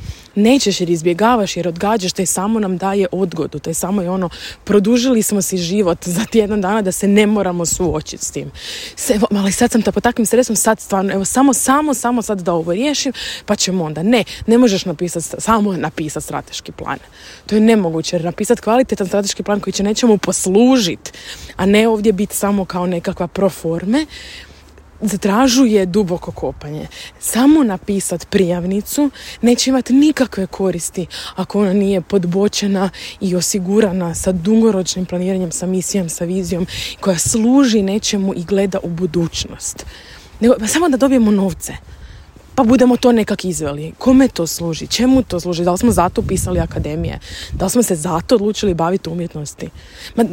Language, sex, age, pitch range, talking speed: Croatian, female, 20-39, 180-225 Hz, 165 wpm